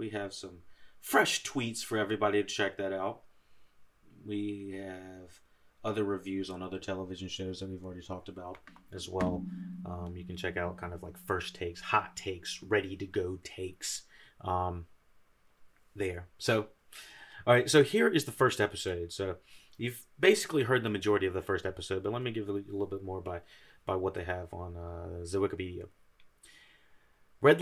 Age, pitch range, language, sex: 30-49, 90-110 Hz, English, male